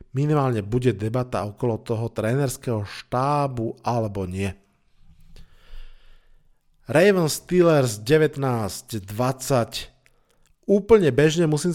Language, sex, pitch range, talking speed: Slovak, male, 125-145 Hz, 80 wpm